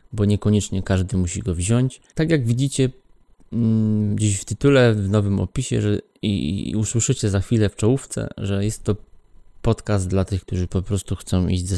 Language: Polish